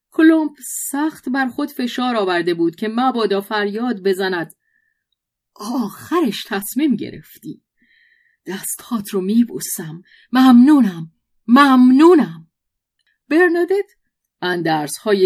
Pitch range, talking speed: 180-255 Hz, 85 wpm